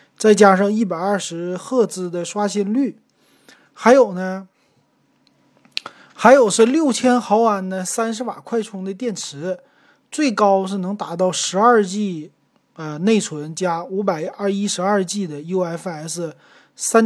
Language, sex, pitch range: Chinese, male, 160-210 Hz